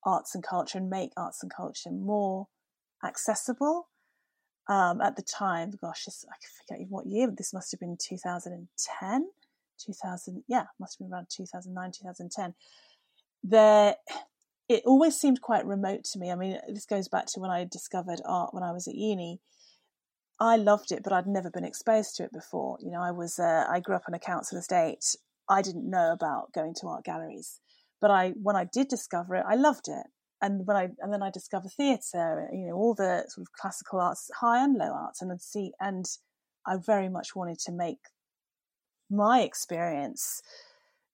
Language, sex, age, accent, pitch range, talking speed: English, female, 30-49, British, 180-215 Hz, 190 wpm